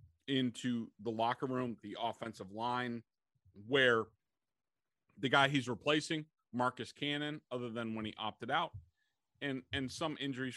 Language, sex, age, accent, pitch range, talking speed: English, male, 30-49, American, 120-160 Hz, 135 wpm